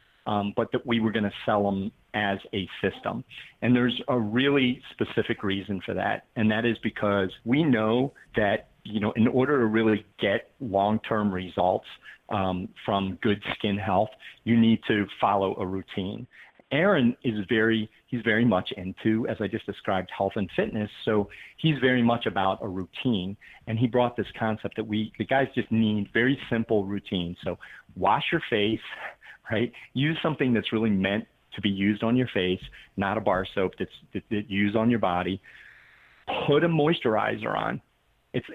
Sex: male